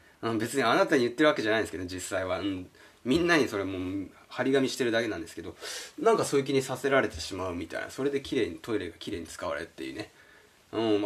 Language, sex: Japanese, male